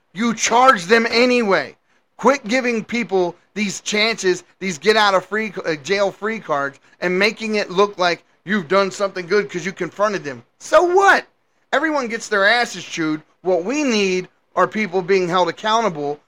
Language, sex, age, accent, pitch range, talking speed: English, male, 30-49, American, 170-225 Hz, 150 wpm